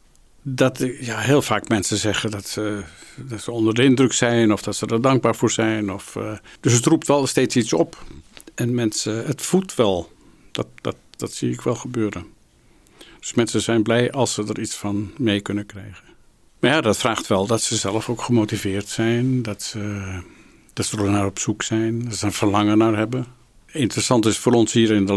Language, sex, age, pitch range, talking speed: Dutch, male, 60-79, 105-115 Hz, 205 wpm